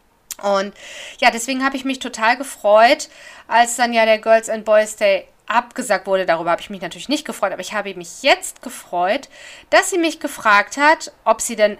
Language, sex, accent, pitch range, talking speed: German, female, German, 210-295 Hz, 200 wpm